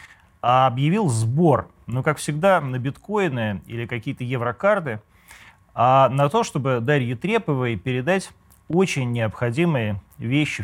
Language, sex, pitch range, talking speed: Russian, male, 105-150 Hz, 115 wpm